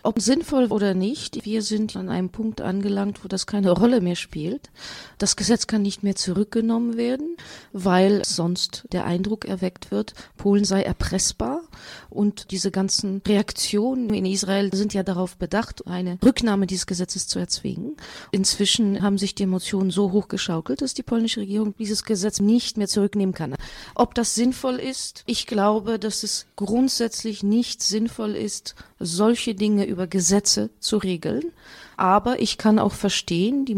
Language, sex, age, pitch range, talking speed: English, female, 40-59, 190-225 Hz, 160 wpm